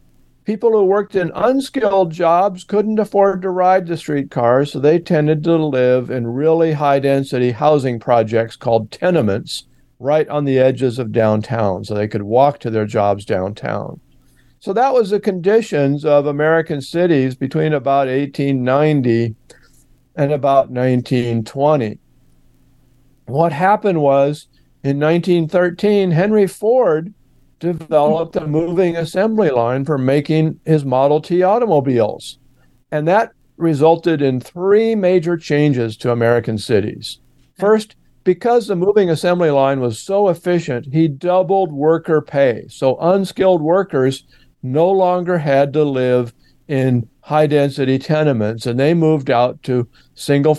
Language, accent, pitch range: English, American, 130-175 Hz